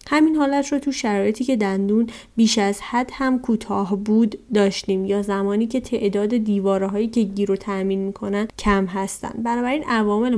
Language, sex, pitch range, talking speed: Persian, female, 200-250 Hz, 155 wpm